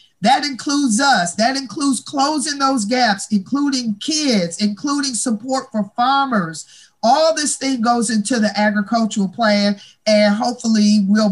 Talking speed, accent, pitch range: 135 wpm, American, 200-250 Hz